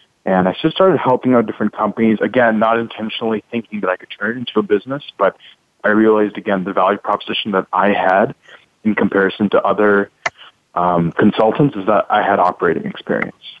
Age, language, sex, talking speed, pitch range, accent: 20-39, English, male, 185 wpm, 100-115 Hz, American